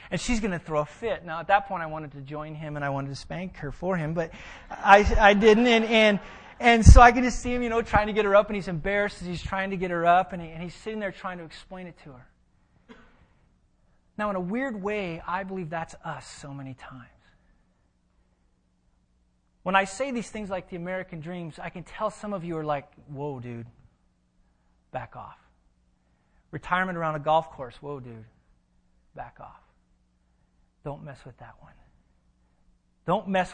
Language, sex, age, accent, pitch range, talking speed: English, male, 30-49, American, 145-210 Hz, 205 wpm